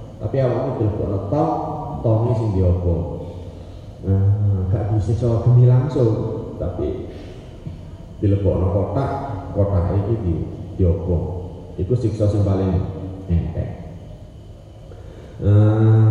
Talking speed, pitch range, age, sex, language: 100 wpm, 90-110 Hz, 30-49, male, Indonesian